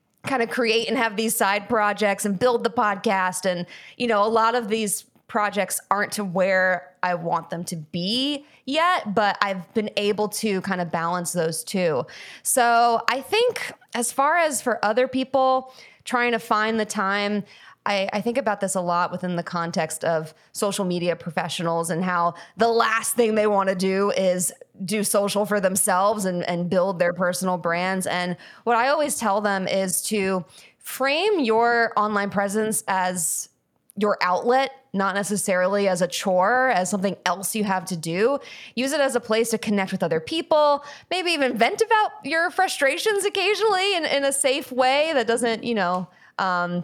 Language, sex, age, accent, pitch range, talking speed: English, female, 20-39, American, 185-250 Hz, 180 wpm